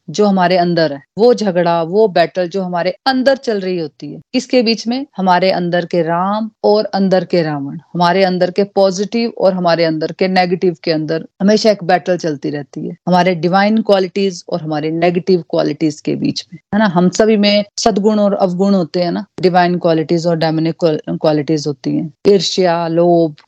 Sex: female